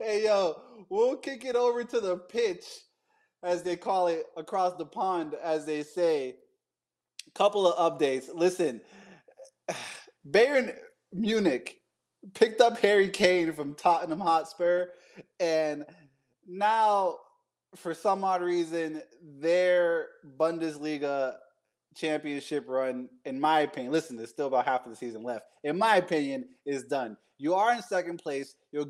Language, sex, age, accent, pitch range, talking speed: English, male, 20-39, American, 135-195 Hz, 135 wpm